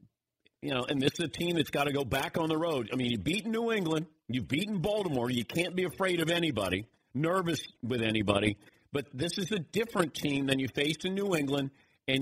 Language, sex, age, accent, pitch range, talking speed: English, male, 50-69, American, 115-165 Hz, 225 wpm